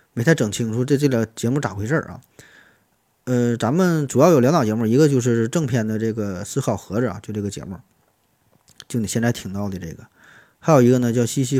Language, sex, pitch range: Chinese, male, 115-145 Hz